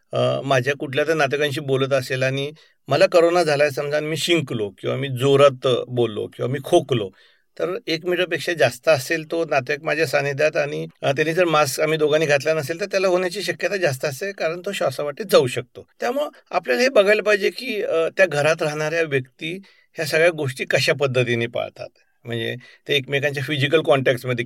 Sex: male